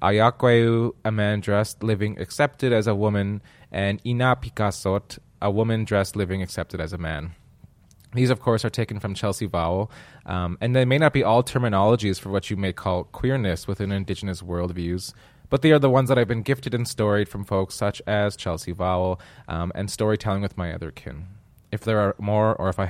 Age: 20-39